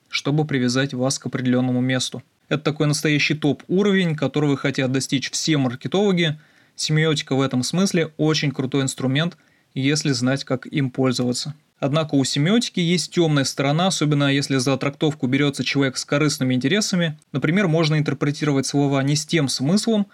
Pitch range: 135-155 Hz